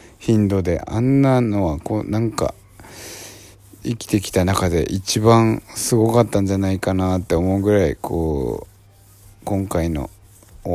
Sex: male